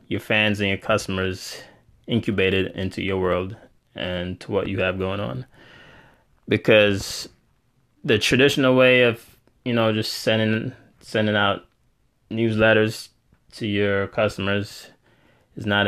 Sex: male